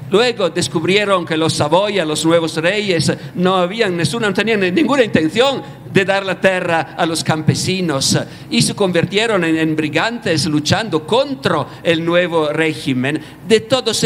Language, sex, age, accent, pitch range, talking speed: Italian, male, 50-69, native, 150-195 Hz, 145 wpm